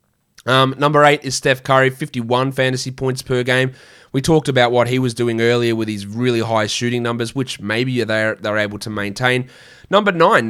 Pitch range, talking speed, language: 115-135 Hz, 195 wpm, English